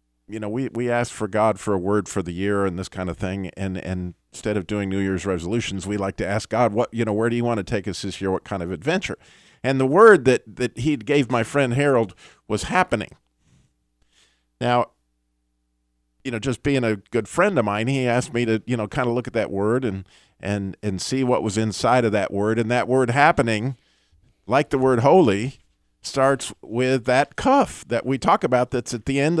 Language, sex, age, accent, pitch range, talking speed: English, male, 50-69, American, 95-130 Hz, 225 wpm